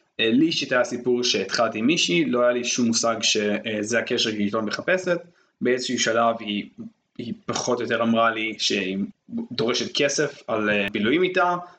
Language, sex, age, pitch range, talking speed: Hebrew, male, 20-39, 115-175 Hz, 160 wpm